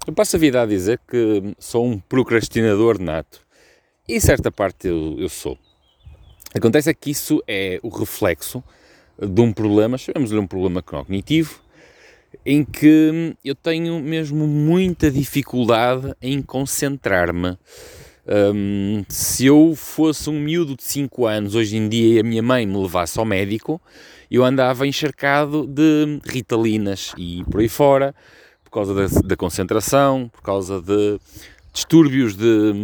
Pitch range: 100-140 Hz